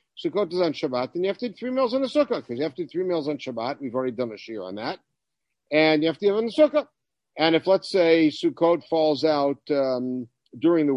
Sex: male